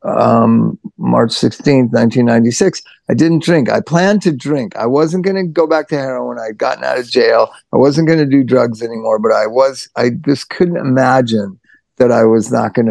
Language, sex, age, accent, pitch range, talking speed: English, male, 50-69, American, 115-140 Hz, 200 wpm